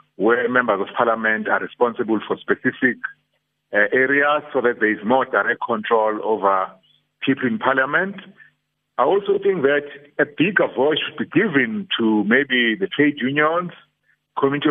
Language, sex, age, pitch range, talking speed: English, male, 50-69, 115-160 Hz, 150 wpm